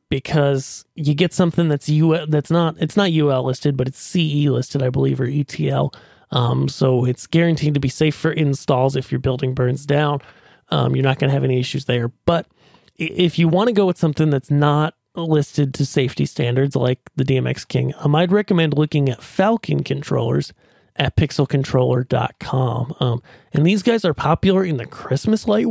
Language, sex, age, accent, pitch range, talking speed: English, male, 30-49, American, 135-170 Hz, 185 wpm